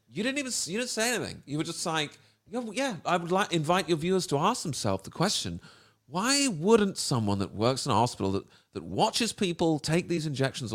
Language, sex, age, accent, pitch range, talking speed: English, male, 40-59, British, 100-150 Hz, 210 wpm